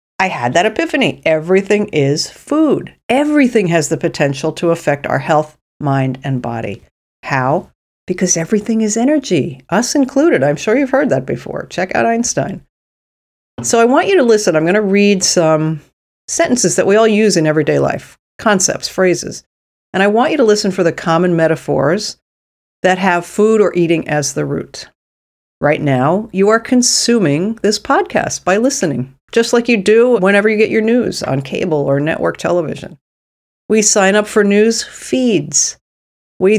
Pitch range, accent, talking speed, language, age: 155-220 Hz, American, 170 wpm, English, 50-69